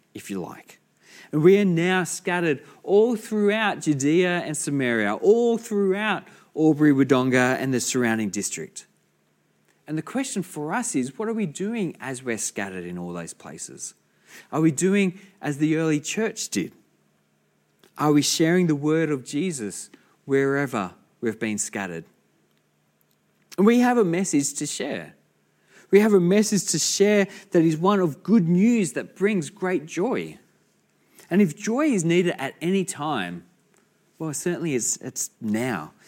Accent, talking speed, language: Australian, 155 wpm, English